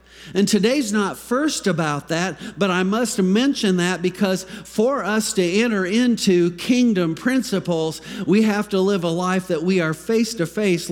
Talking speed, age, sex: 160 wpm, 50-69, male